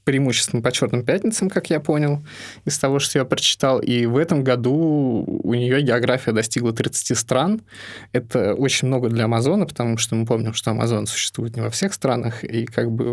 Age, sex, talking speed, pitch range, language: 20-39, male, 185 wpm, 115-135 Hz, Russian